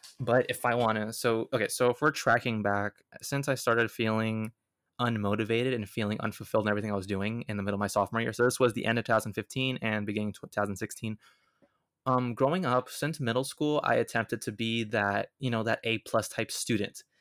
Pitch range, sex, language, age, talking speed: 105-120 Hz, male, English, 20-39, 215 wpm